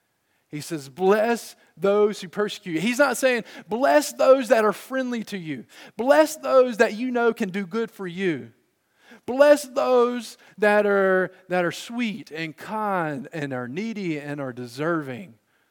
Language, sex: English, male